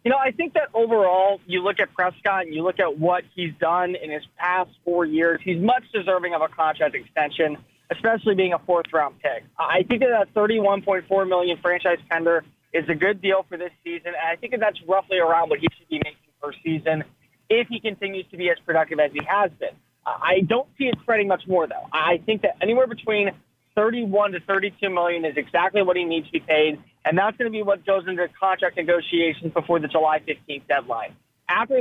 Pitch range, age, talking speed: 165-205 Hz, 20-39, 220 wpm